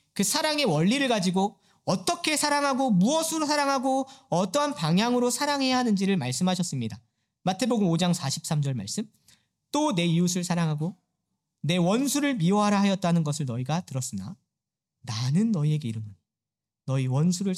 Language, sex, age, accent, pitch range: Korean, male, 40-59, native, 145-200 Hz